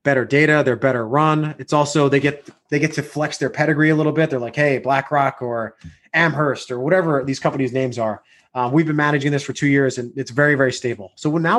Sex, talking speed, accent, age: male, 235 wpm, American, 20-39